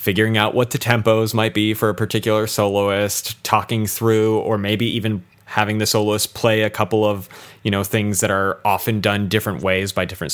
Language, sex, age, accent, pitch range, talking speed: English, male, 30-49, American, 100-115 Hz, 195 wpm